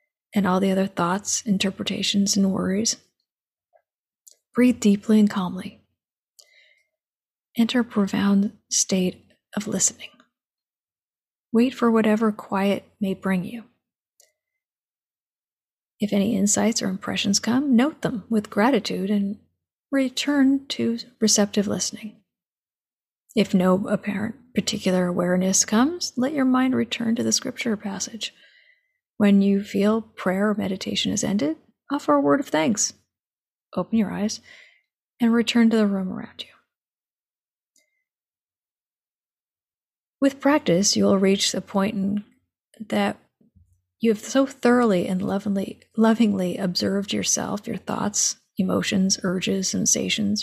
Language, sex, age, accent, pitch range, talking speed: English, female, 30-49, American, 195-235 Hz, 120 wpm